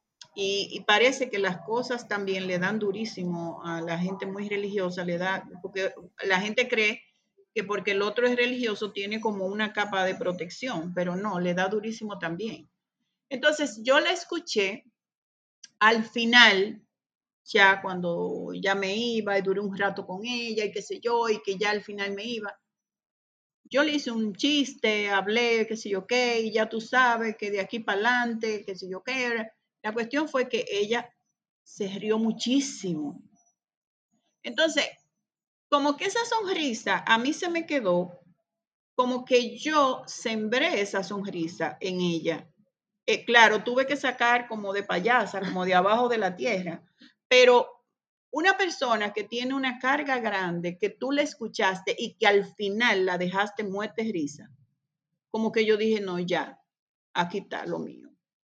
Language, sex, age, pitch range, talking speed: Spanish, female, 40-59, 195-245 Hz, 165 wpm